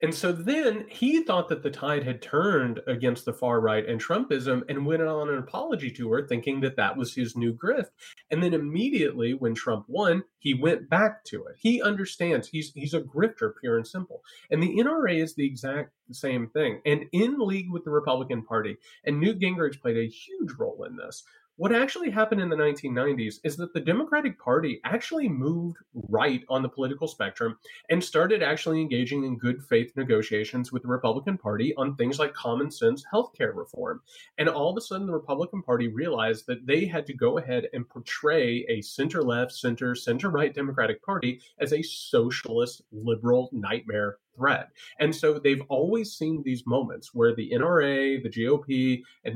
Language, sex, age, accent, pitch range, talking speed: English, male, 30-49, American, 125-170 Hz, 190 wpm